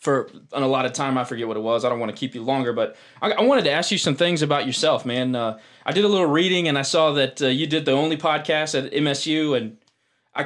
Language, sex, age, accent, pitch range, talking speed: English, male, 20-39, American, 130-160 Hz, 280 wpm